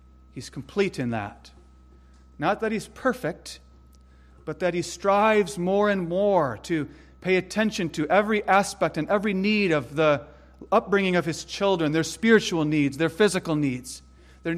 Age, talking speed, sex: 40-59, 150 wpm, male